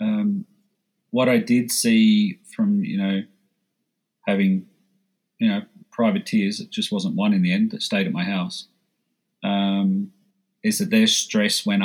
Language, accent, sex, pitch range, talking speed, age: English, Australian, male, 185-215 Hz, 150 wpm, 40-59